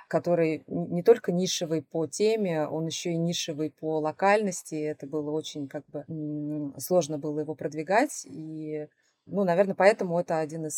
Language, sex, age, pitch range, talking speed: Russian, female, 20-39, 155-180 Hz, 155 wpm